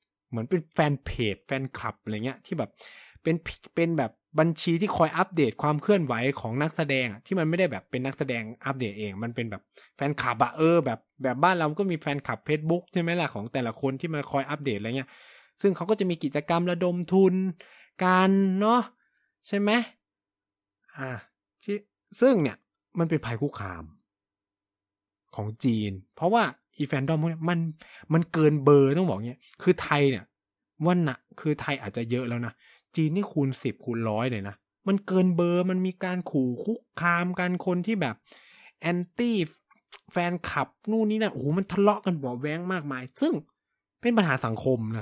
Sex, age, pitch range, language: male, 20-39, 115-180 Hz, Thai